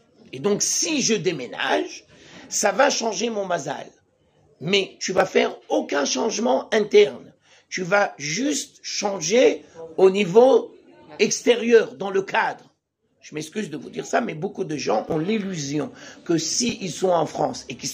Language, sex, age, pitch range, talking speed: French, male, 60-79, 185-235 Hz, 160 wpm